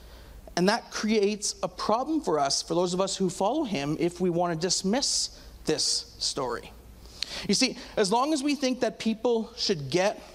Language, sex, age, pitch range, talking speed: English, male, 40-59, 170-220 Hz, 180 wpm